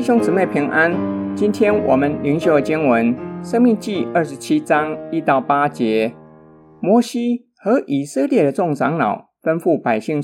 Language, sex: Chinese, male